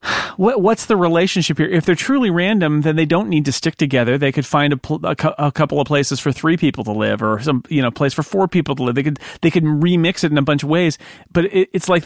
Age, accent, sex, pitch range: 40-59, American, male, 120-155 Hz